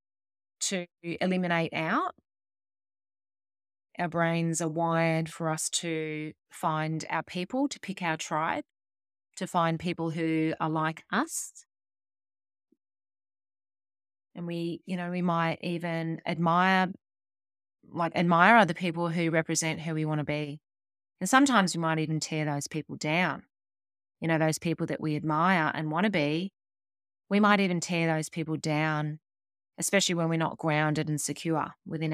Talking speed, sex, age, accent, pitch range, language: 145 wpm, female, 20-39, Australian, 145-170 Hz, English